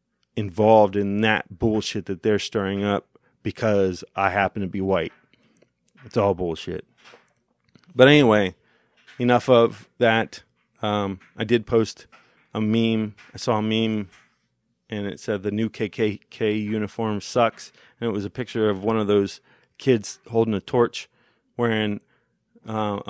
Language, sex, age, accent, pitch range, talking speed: English, male, 30-49, American, 105-125 Hz, 145 wpm